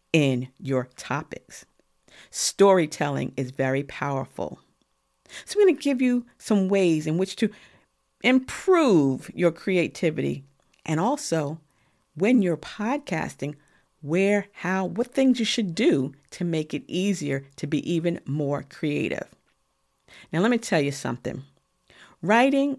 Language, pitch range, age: English, 155-210 Hz, 50-69